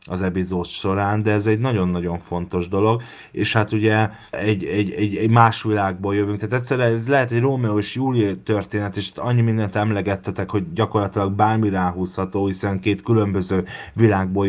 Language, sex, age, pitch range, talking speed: Hungarian, male, 30-49, 95-110 Hz, 165 wpm